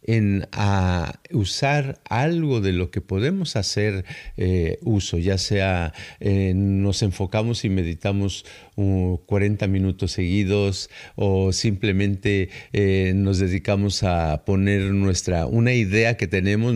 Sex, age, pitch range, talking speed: male, 50-69, 95-125 Hz, 110 wpm